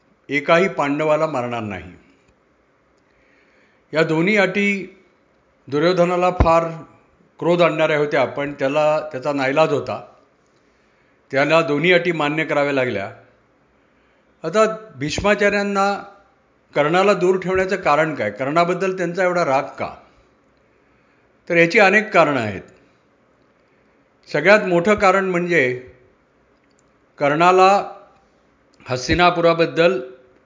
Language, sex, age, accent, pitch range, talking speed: Marathi, male, 50-69, native, 140-185 Hz, 80 wpm